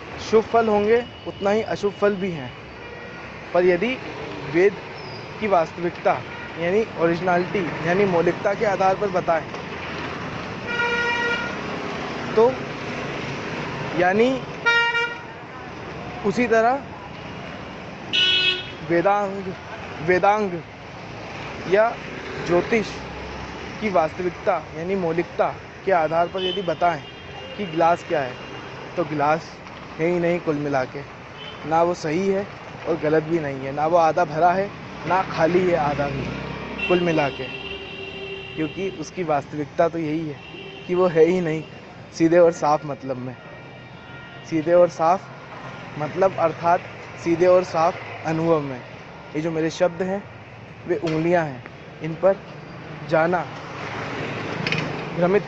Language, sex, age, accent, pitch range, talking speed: Hindi, male, 20-39, native, 150-185 Hz, 120 wpm